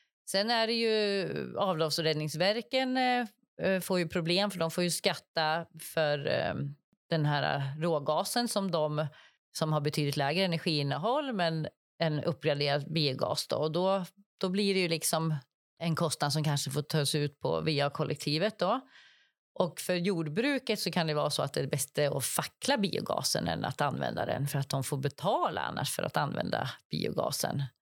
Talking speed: 170 wpm